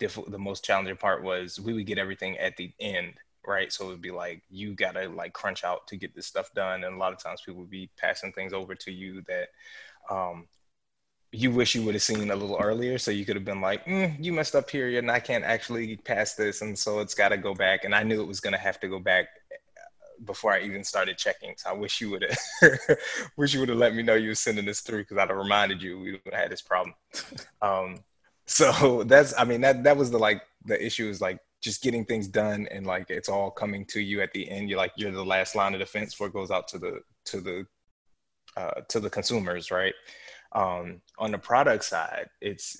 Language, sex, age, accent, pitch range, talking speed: English, male, 20-39, American, 95-115 Hz, 245 wpm